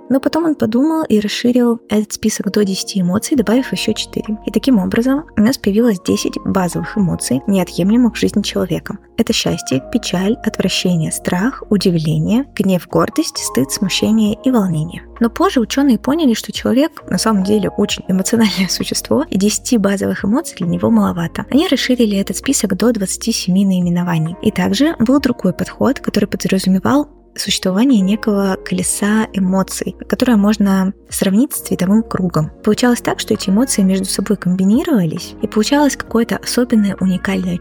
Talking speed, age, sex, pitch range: 150 wpm, 20-39, female, 190-235 Hz